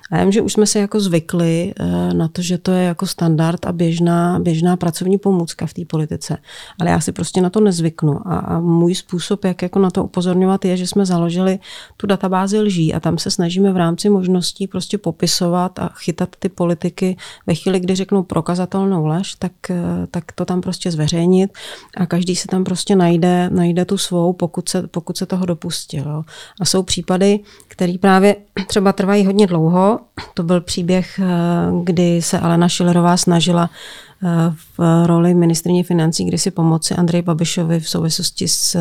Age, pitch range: 40-59, 170-185 Hz